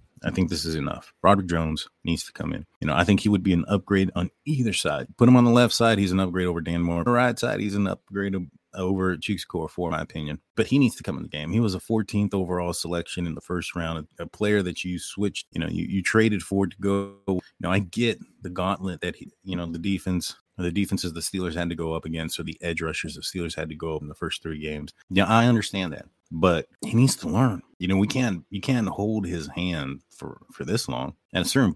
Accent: American